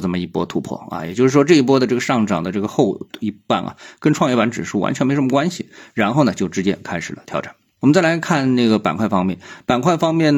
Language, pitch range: Chinese, 100-130 Hz